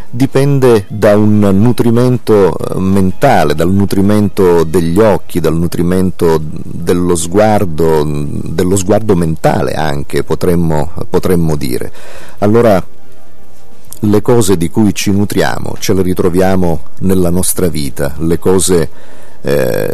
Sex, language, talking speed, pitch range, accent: male, Italian, 110 wpm, 80-100 Hz, native